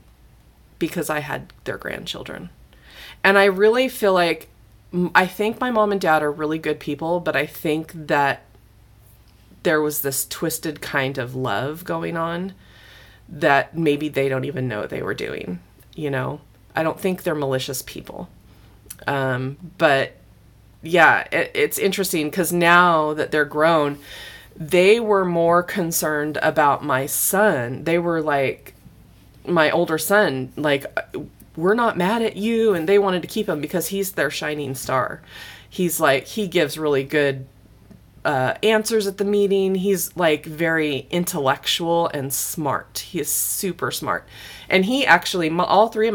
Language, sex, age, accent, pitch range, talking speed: English, female, 20-39, American, 135-180 Hz, 150 wpm